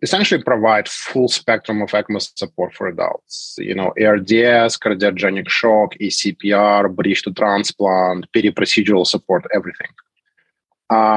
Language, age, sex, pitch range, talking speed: English, 30-49, male, 100-110 Hz, 125 wpm